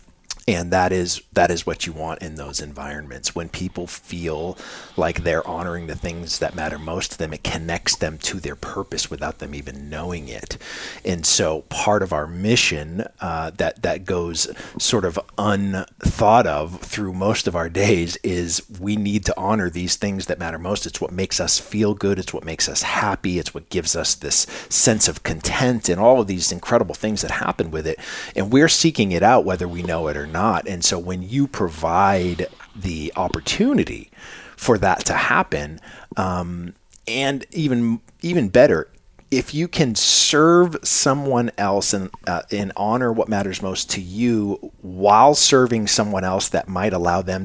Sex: male